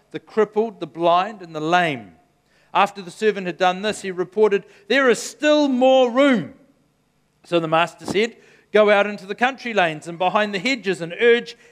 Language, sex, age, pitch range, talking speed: English, male, 50-69, 185-225 Hz, 185 wpm